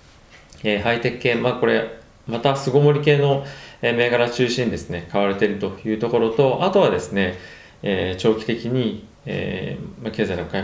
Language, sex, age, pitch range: Japanese, male, 20-39, 95-125 Hz